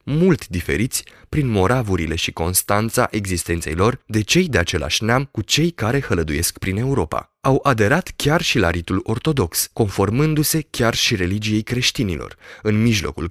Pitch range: 85-130 Hz